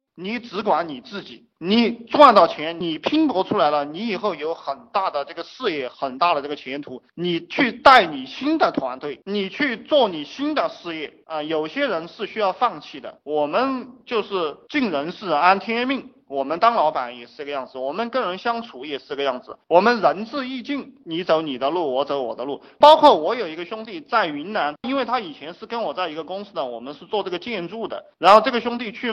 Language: Chinese